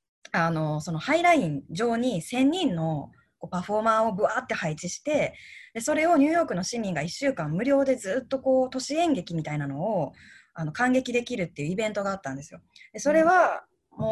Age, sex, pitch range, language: 20-39, female, 170-275 Hz, Japanese